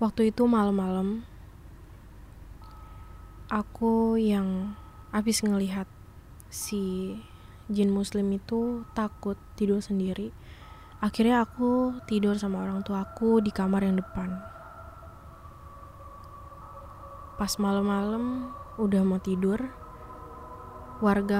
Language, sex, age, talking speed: Indonesian, female, 20-39, 85 wpm